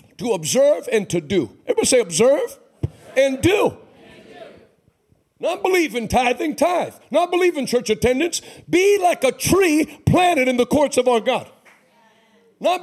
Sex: male